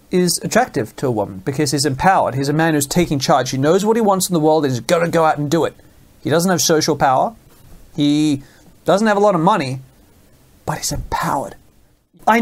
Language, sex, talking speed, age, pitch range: English, male, 220 wpm, 30-49, 145-180 Hz